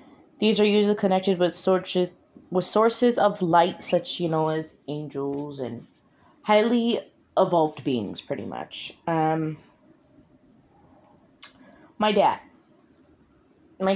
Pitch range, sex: 165-210 Hz, female